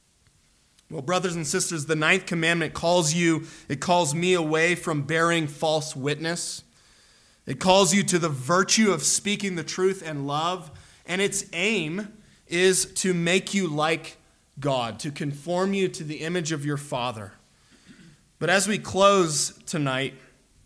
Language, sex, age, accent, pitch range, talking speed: English, male, 20-39, American, 150-185 Hz, 150 wpm